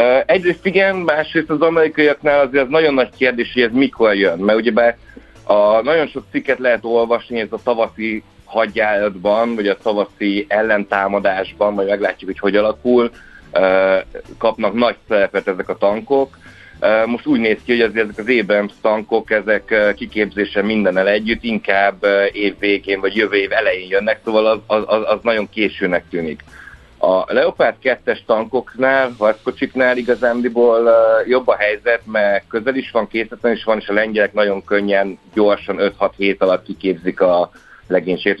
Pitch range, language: 100-120 Hz, Hungarian